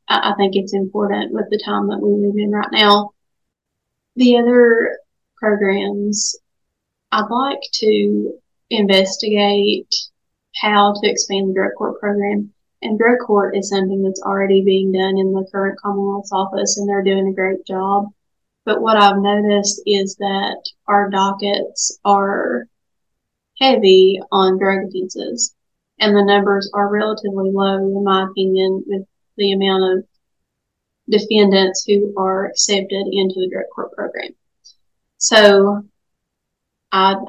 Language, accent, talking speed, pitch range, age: English, American, 135 wpm, 195-205 Hz, 30-49